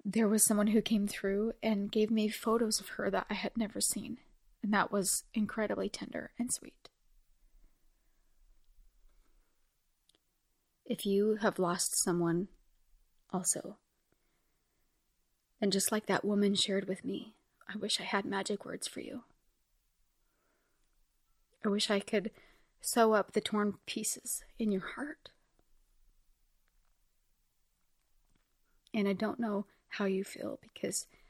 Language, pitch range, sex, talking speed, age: English, 195-225 Hz, female, 125 wpm, 30-49